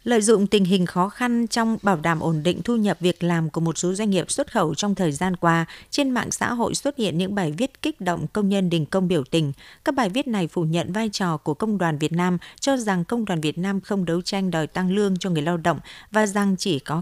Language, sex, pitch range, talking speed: Vietnamese, female, 170-220 Hz, 270 wpm